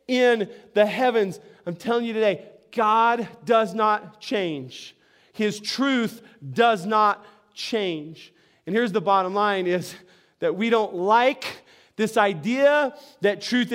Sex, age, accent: male, 30-49, American